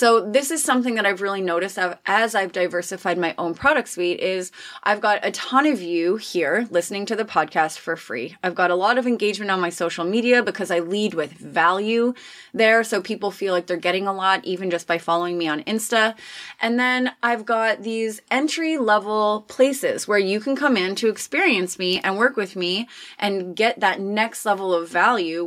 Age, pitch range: 20-39, 180-230 Hz